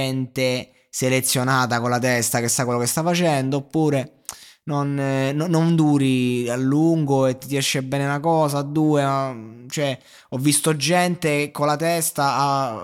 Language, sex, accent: Italian, male, native